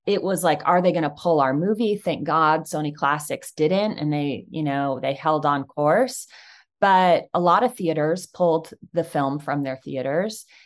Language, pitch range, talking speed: English, 155-220 Hz, 190 wpm